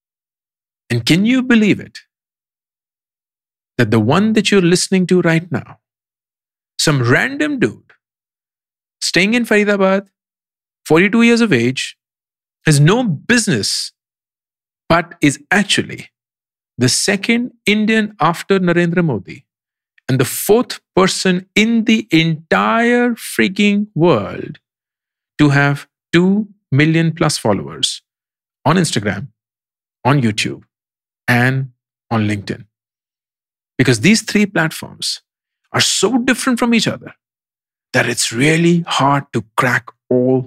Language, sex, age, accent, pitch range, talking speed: English, male, 50-69, Indian, 130-210 Hz, 110 wpm